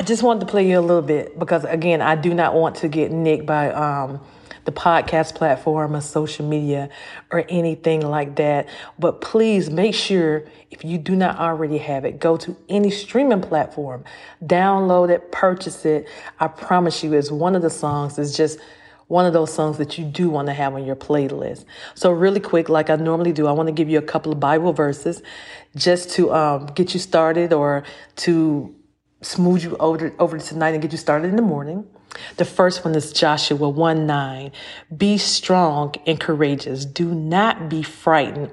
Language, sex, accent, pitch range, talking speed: English, female, American, 150-180 Hz, 195 wpm